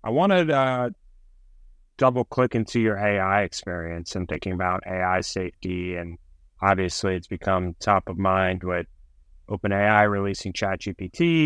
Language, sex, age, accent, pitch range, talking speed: English, male, 20-39, American, 85-100 Hz, 130 wpm